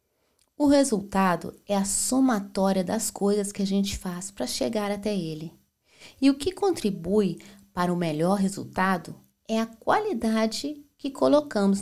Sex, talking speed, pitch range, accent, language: female, 140 wpm, 170-225 Hz, Brazilian, Portuguese